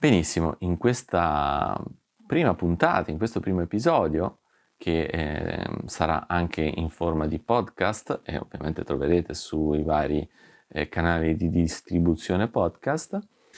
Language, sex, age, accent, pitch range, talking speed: Italian, male, 30-49, native, 80-105 Hz, 120 wpm